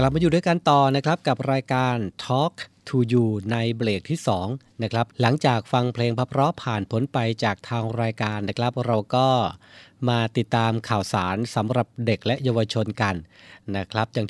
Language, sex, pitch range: Thai, male, 110-135 Hz